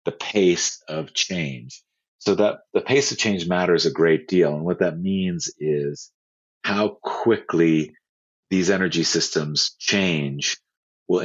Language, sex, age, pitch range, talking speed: English, male, 40-59, 75-90 Hz, 140 wpm